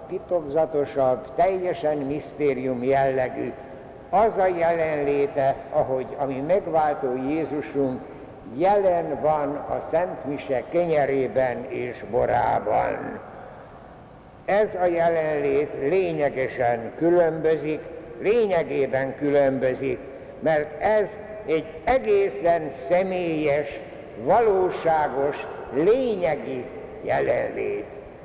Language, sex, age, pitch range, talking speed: Hungarian, male, 60-79, 145-180 Hz, 75 wpm